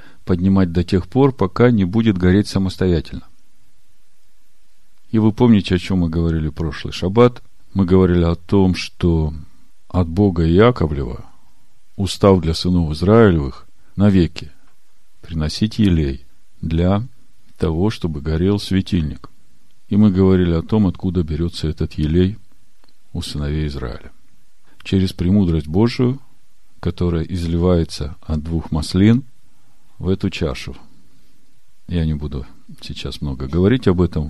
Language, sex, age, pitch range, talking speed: Russian, male, 50-69, 80-105 Hz, 120 wpm